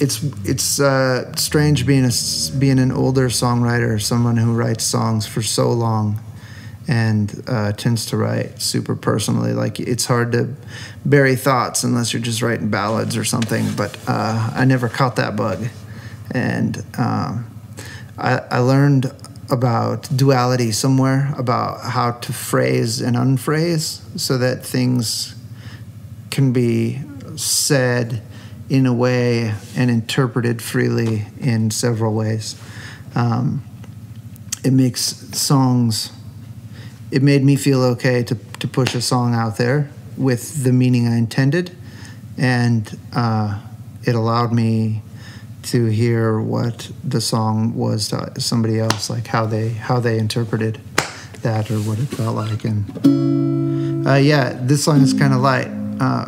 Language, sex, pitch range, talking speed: English, male, 110-130 Hz, 140 wpm